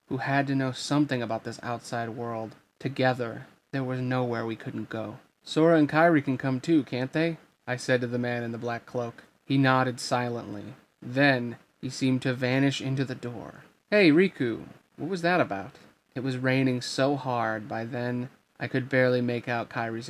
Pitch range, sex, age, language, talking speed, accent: 120-140 Hz, male, 30-49, English, 190 wpm, American